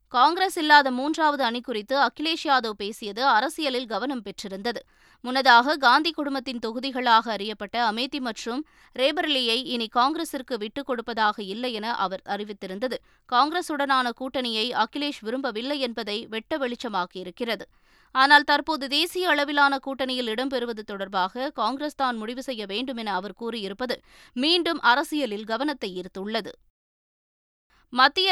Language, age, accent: Tamil, 20-39, native